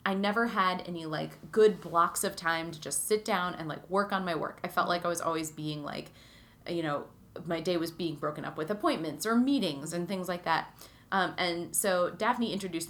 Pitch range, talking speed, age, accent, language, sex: 160-200 Hz, 225 wpm, 30-49, American, English, female